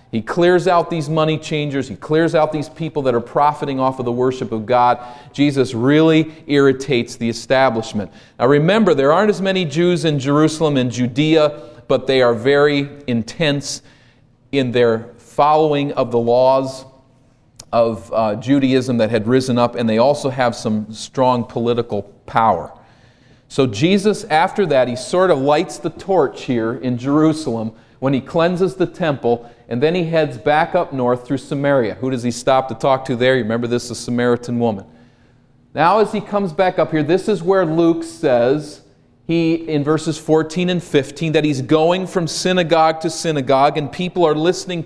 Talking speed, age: 175 wpm, 40-59